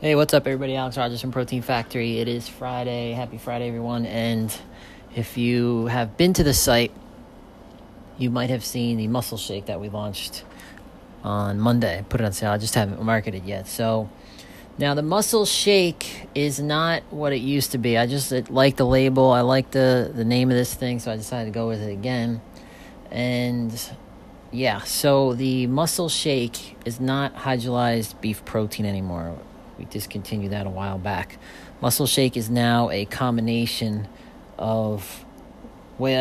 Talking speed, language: 170 wpm, English